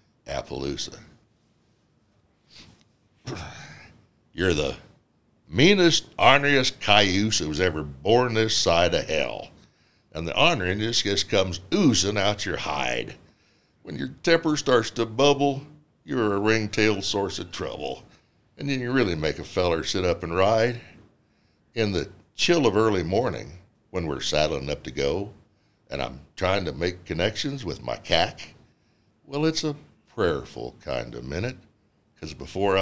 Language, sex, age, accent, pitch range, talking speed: English, male, 60-79, American, 85-115 Hz, 140 wpm